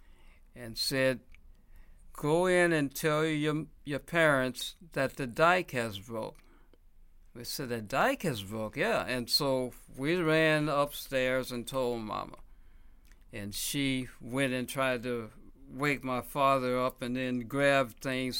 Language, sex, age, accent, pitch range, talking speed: English, male, 60-79, American, 110-140 Hz, 140 wpm